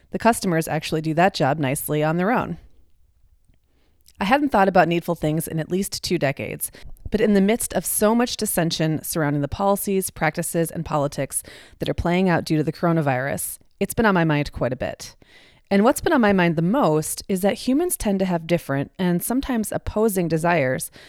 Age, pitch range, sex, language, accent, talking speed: 30-49, 150-200 Hz, female, English, American, 200 wpm